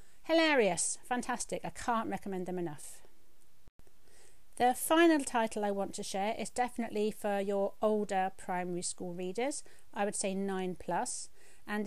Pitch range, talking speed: 180-220 Hz, 140 wpm